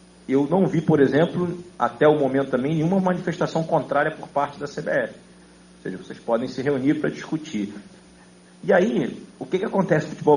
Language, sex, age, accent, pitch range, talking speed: Portuguese, male, 50-69, Brazilian, 130-175 Hz, 185 wpm